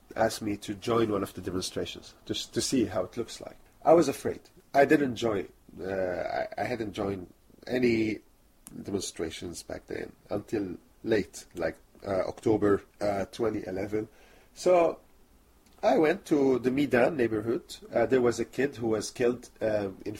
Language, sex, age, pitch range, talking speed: English, male, 40-59, 100-125 Hz, 160 wpm